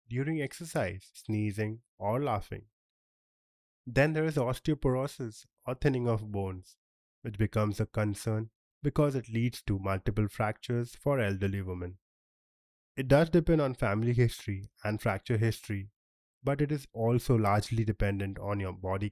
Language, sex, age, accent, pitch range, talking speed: English, male, 20-39, Indian, 105-145 Hz, 140 wpm